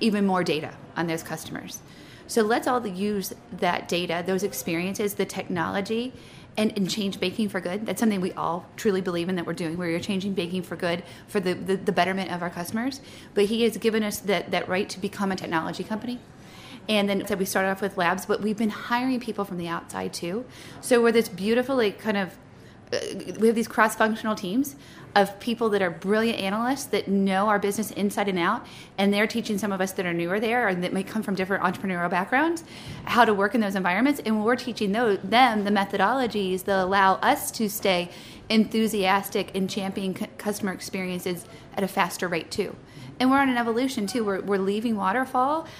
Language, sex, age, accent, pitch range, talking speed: English, female, 30-49, American, 190-225 Hz, 200 wpm